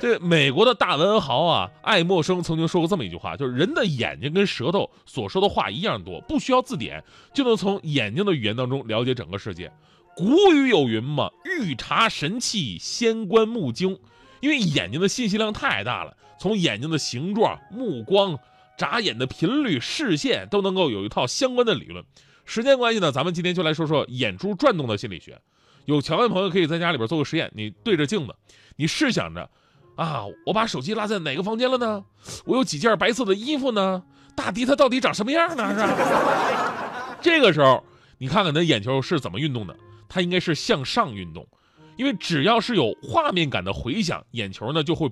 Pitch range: 140-220 Hz